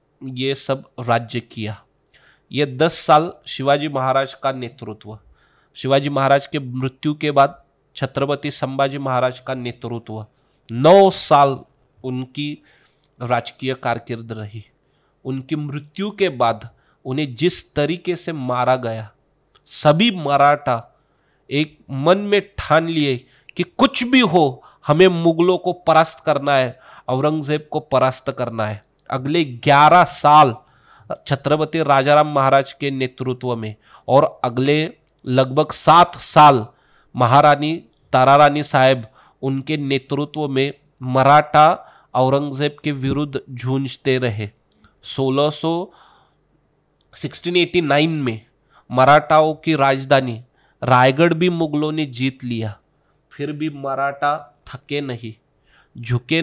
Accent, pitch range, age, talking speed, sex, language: native, 125-150 Hz, 30-49, 110 wpm, male, Hindi